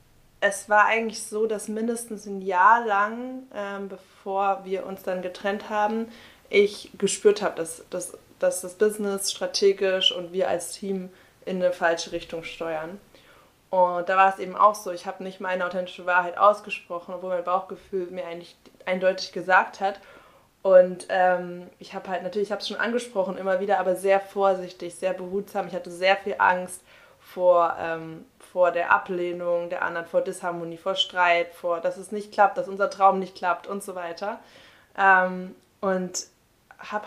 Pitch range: 180-210 Hz